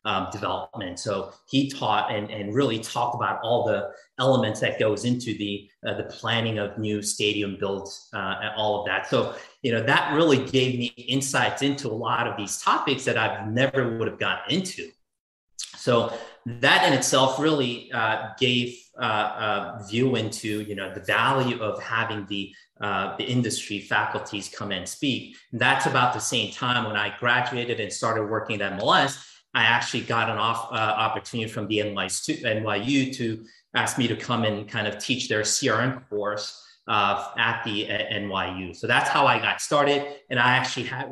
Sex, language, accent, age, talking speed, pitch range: male, English, American, 30-49, 185 wpm, 105-125 Hz